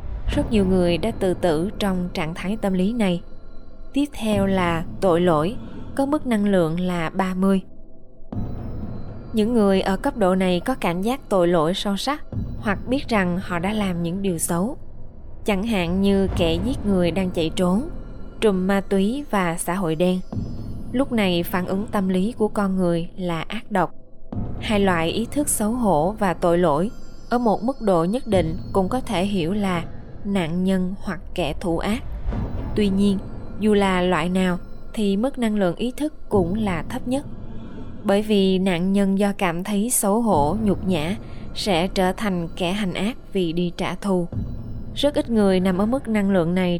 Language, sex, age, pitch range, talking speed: Vietnamese, female, 20-39, 175-210 Hz, 185 wpm